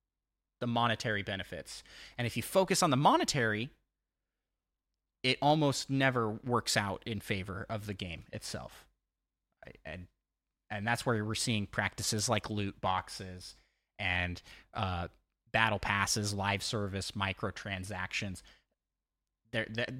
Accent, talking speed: American, 115 wpm